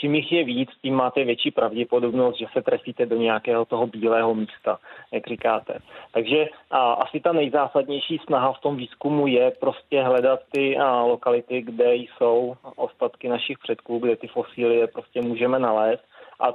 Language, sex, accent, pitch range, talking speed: Czech, male, native, 115-130 Hz, 165 wpm